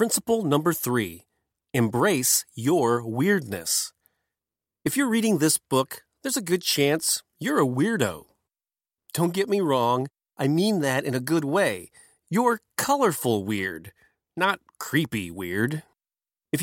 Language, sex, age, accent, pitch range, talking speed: English, male, 30-49, American, 130-210 Hz, 130 wpm